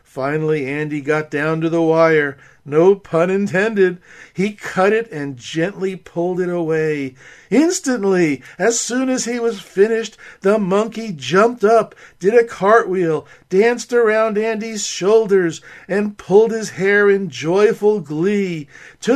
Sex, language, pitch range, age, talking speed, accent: male, English, 150-200 Hz, 50-69, 140 wpm, American